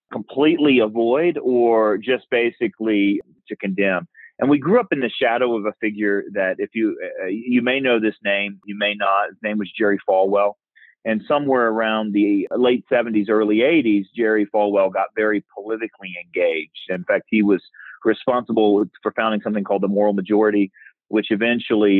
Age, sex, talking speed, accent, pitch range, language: 40-59, male, 170 wpm, American, 100-125 Hz, English